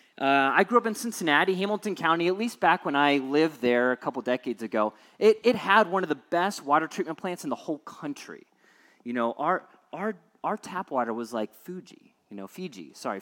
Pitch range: 150-205 Hz